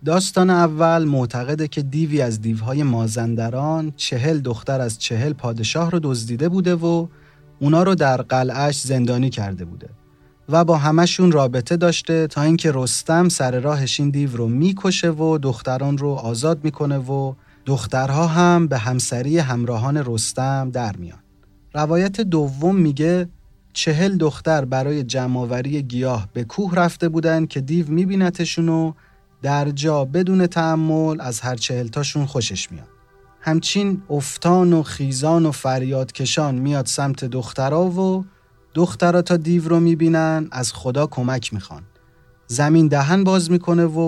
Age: 30-49